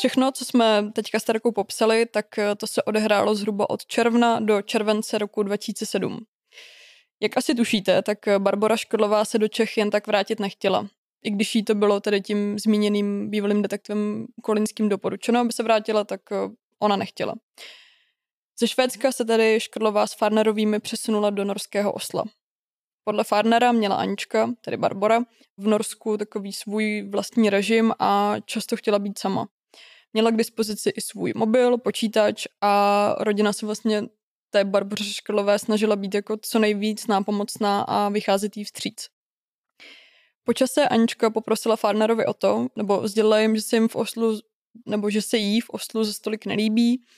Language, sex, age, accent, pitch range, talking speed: Czech, female, 20-39, native, 205-225 Hz, 160 wpm